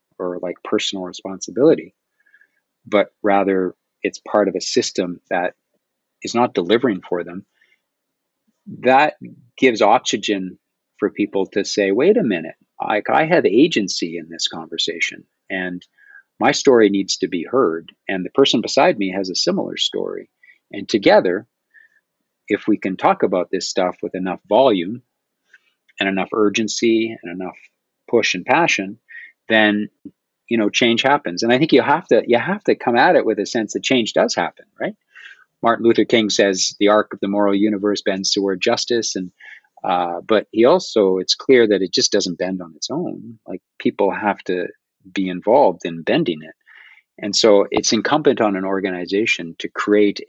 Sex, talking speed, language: male, 170 wpm, English